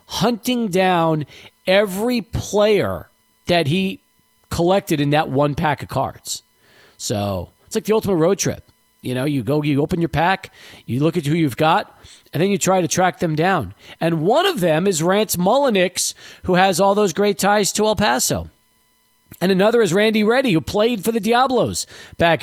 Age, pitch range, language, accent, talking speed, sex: 40-59, 130-190 Hz, English, American, 185 wpm, male